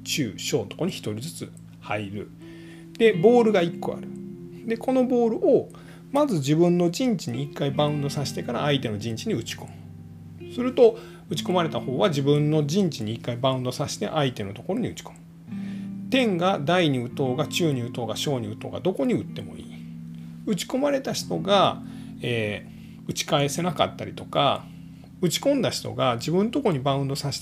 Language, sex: Japanese, male